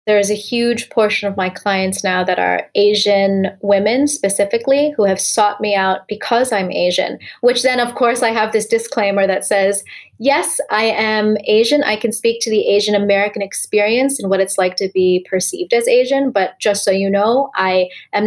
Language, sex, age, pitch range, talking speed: English, female, 20-39, 195-245 Hz, 195 wpm